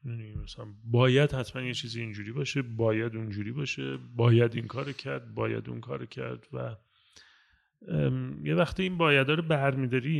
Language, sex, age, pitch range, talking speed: Persian, male, 30-49, 110-155 Hz, 155 wpm